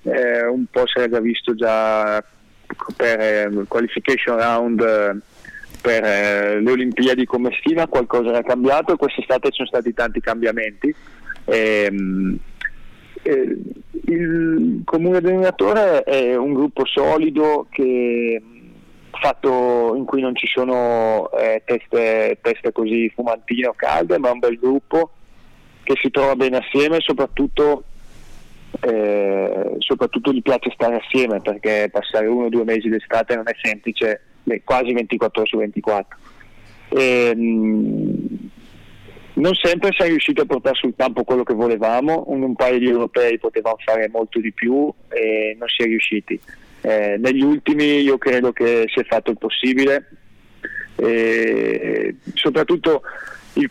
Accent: native